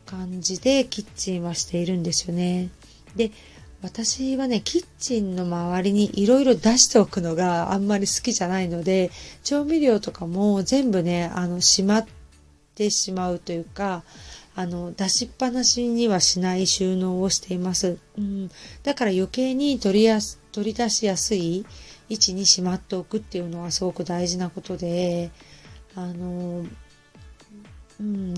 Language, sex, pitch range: Japanese, female, 180-215 Hz